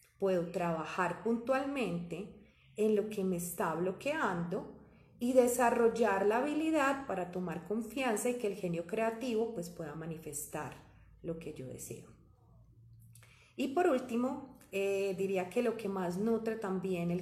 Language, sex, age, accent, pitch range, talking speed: Spanish, female, 30-49, Colombian, 175-225 Hz, 140 wpm